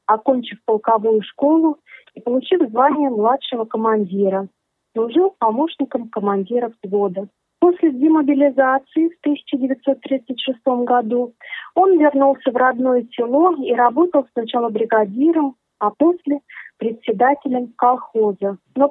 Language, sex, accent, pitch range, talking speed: Russian, female, native, 230-290 Hz, 100 wpm